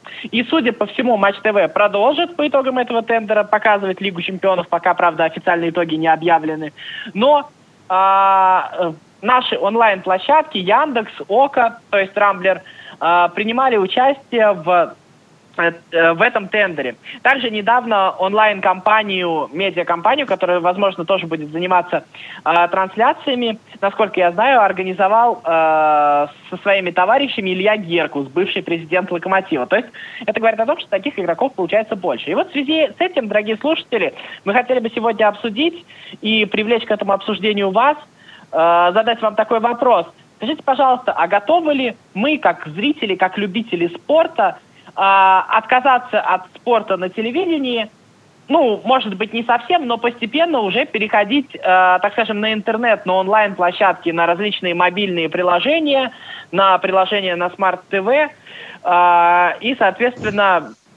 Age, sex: 20-39, male